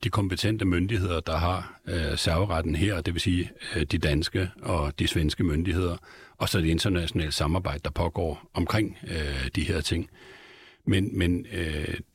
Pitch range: 85-100 Hz